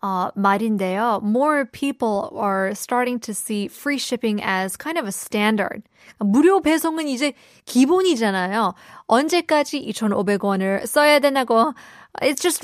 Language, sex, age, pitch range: Korean, female, 20-39, 200-280 Hz